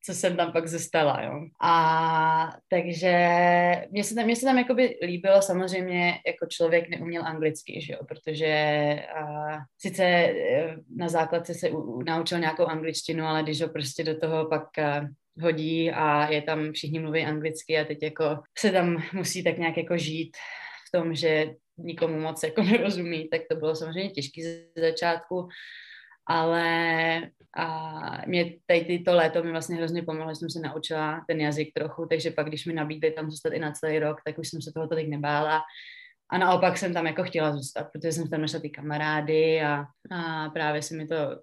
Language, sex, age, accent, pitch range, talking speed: Czech, female, 20-39, native, 155-170 Hz, 185 wpm